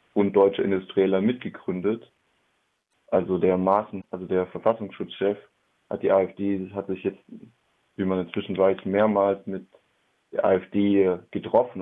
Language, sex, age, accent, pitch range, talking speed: German, male, 20-39, German, 90-105 Hz, 125 wpm